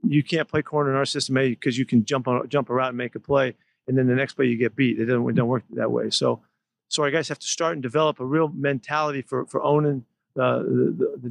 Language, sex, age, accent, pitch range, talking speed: English, male, 40-59, American, 130-145 Hz, 270 wpm